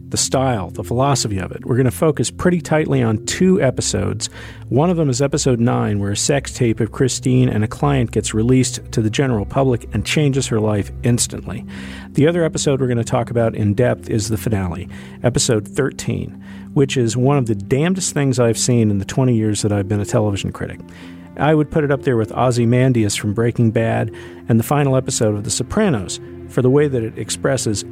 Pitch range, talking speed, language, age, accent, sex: 105-130 Hz, 215 wpm, English, 50-69, American, male